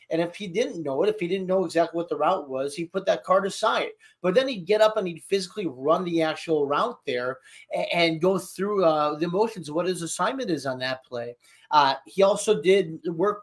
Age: 30-49